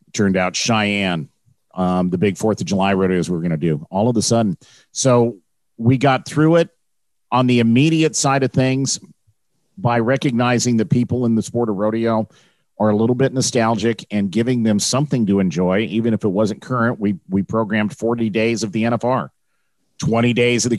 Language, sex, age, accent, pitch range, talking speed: English, male, 50-69, American, 100-125 Hz, 195 wpm